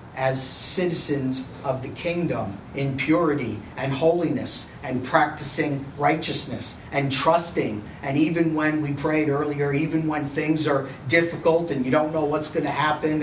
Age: 40-59